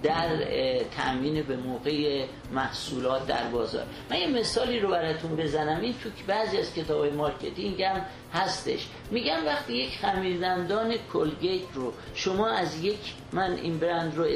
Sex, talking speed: male, 145 wpm